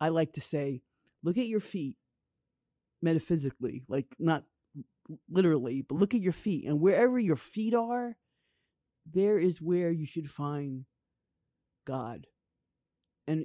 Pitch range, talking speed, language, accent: 140-180 Hz, 135 wpm, English, American